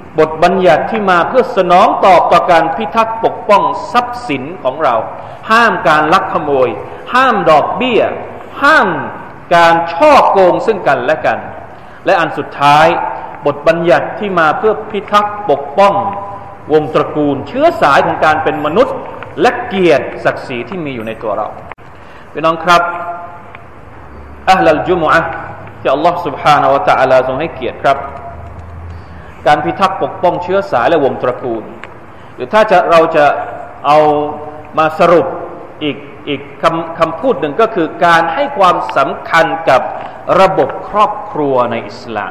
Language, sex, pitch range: Thai, male, 155-230 Hz